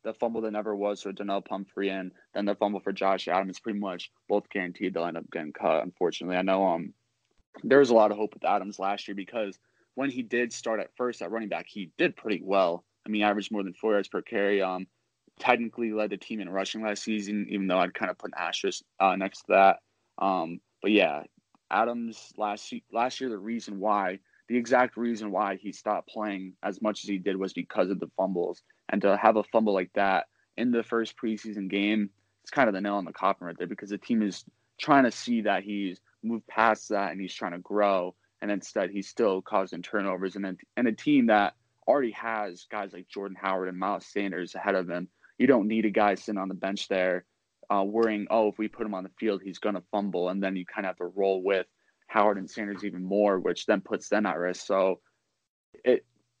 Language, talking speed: English, 230 wpm